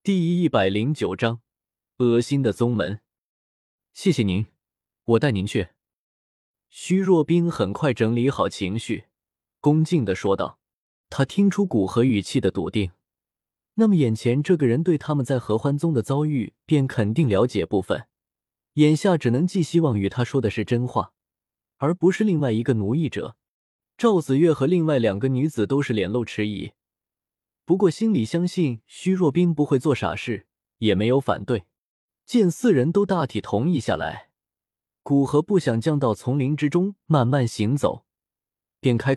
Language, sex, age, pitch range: Chinese, male, 20-39, 110-165 Hz